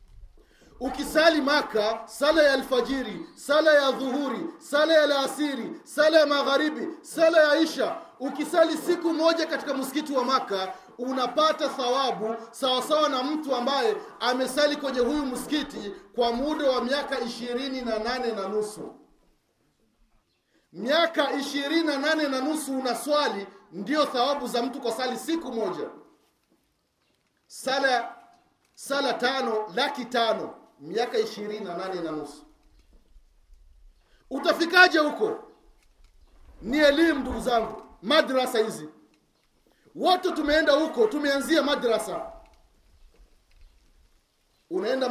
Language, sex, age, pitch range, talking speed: Swahili, male, 40-59, 245-315 Hz, 100 wpm